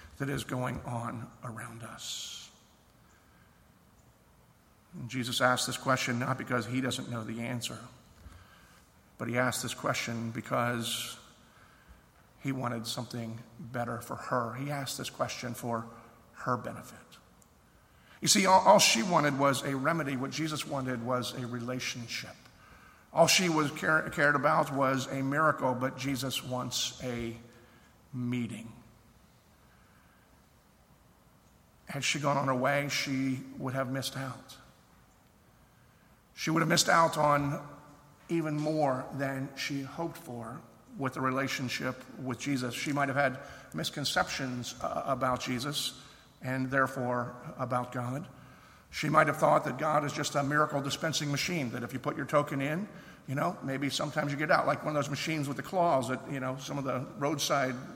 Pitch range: 125-145 Hz